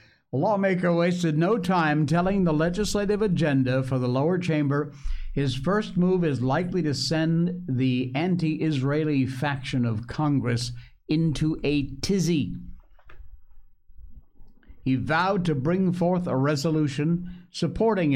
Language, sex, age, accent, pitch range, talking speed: English, male, 60-79, American, 110-150 Hz, 120 wpm